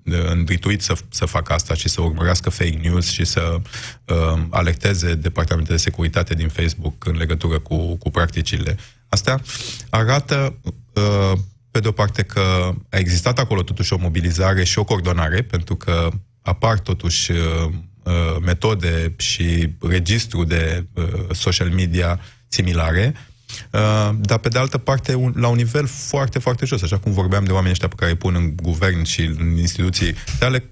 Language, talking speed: Romanian, 160 wpm